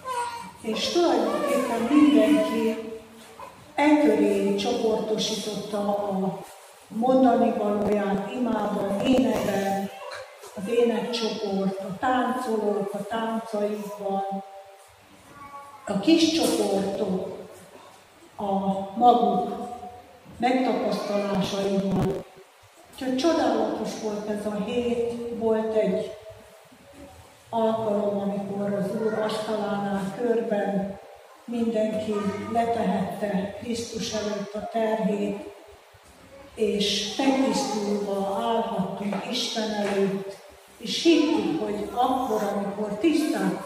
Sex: female